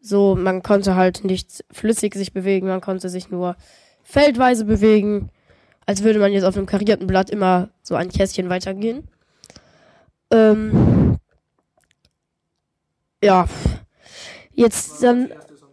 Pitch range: 200-260 Hz